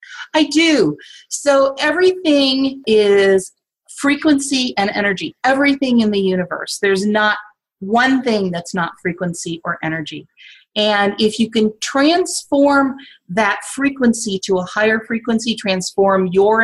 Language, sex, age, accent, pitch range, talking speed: English, female, 30-49, American, 190-240 Hz, 125 wpm